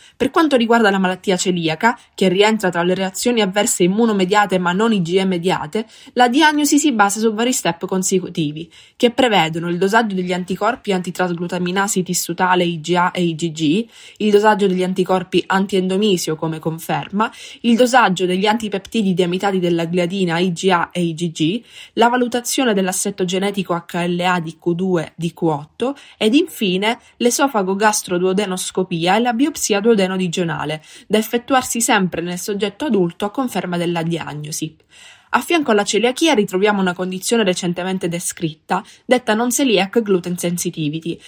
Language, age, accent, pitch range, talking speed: Italian, 20-39, native, 175-220 Hz, 140 wpm